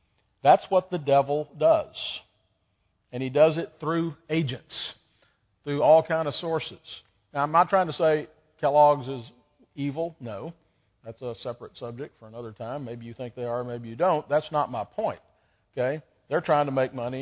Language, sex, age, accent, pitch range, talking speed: English, male, 50-69, American, 115-145 Hz, 180 wpm